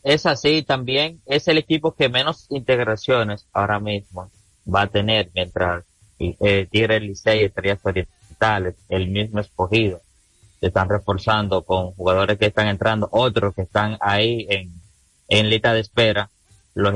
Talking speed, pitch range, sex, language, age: 150 wpm, 100-115 Hz, male, Spanish, 30-49